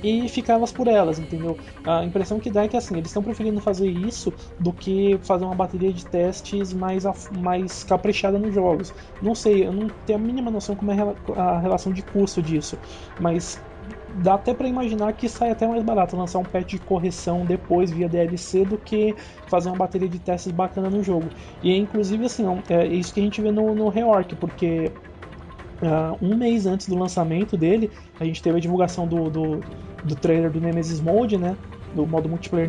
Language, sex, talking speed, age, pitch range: Portuguese, male, 200 wpm, 20-39, 175-210 Hz